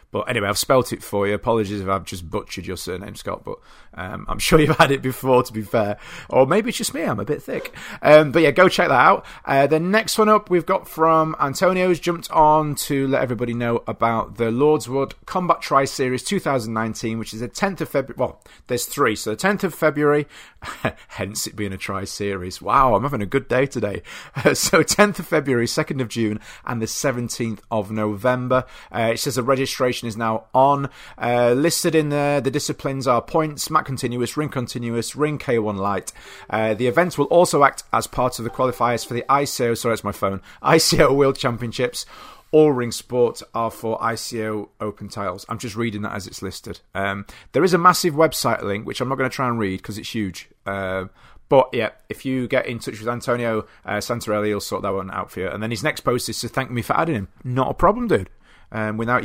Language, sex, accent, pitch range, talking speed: English, male, British, 110-145 Hz, 220 wpm